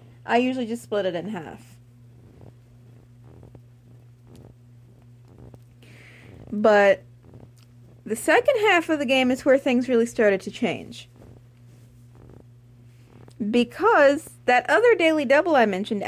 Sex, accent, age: female, American, 30-49